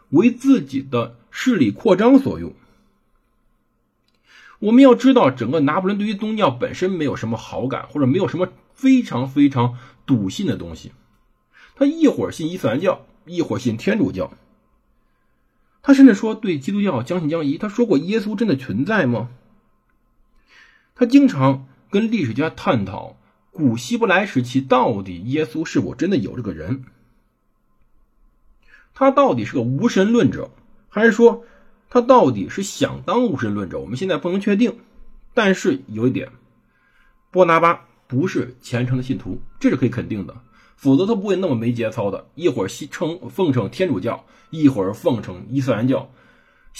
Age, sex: 50-69, male